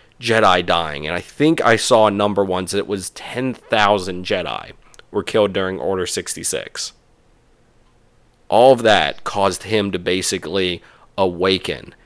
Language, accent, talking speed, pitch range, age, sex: English, American, 140 wpm, 95-110 Hz, 30-49, male